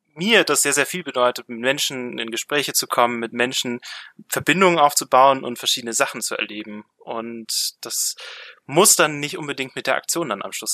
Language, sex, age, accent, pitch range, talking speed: German, male, 20-39, German, 115-145 Hz, 185 wpm